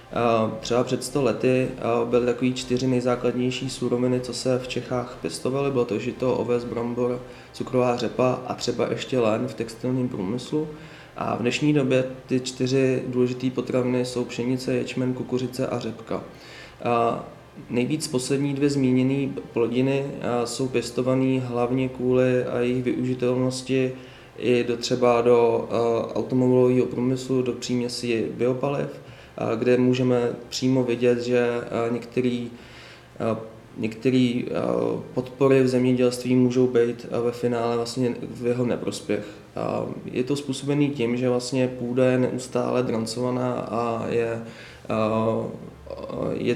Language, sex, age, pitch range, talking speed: Czech, male, 20-39, 120-130 Hz, 120 wpm